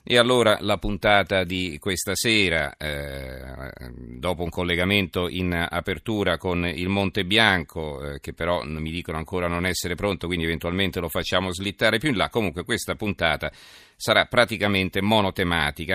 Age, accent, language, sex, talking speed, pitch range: 40-59, native, Italian, male, 150 wpm, 85-100 Hz